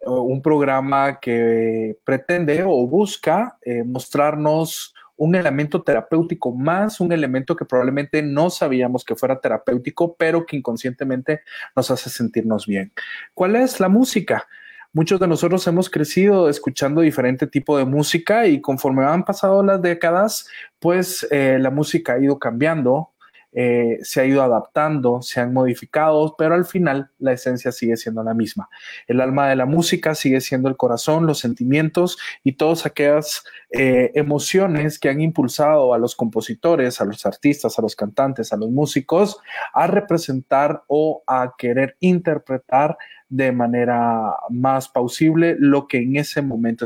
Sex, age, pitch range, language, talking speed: male, 30-49, 125-165 Hz, Spanish, 150 wpm